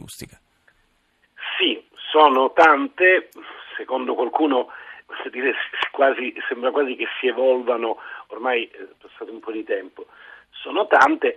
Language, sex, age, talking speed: Italian, male, 40-59, 105 wpm